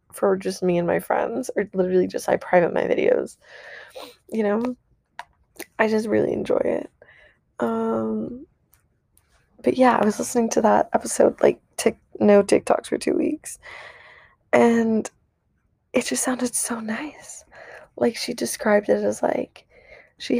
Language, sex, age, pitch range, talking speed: English, female, 20-39, 200-250 Hz, 145 wpm